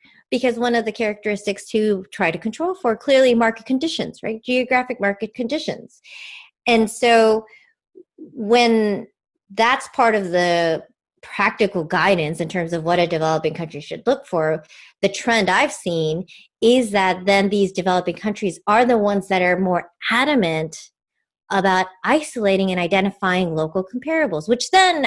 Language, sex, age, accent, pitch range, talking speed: English, female, 30-49, American, 170-230 Hz, 145 wpm